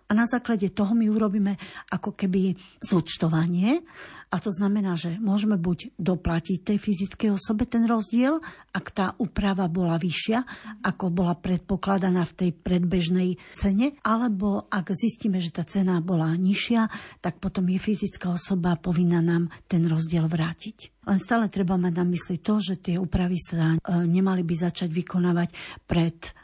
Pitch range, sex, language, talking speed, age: 175-205 Hz, female, Slovak, 150 wpm, 50-69